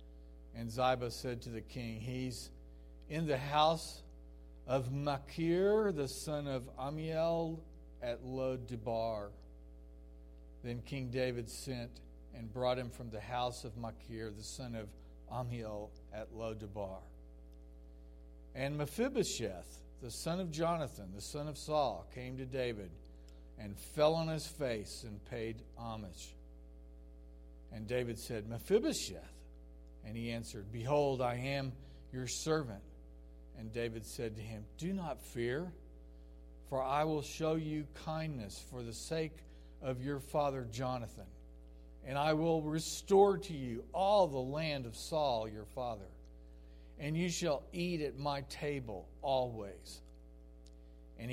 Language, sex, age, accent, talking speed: English, male, 50-69, American, 130 wpm